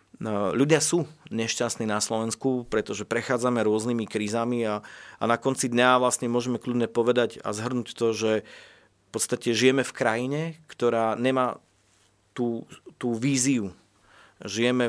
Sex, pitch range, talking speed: male, 110-130 Hz, 135 wpm